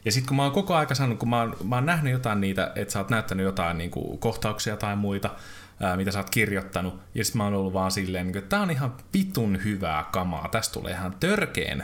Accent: native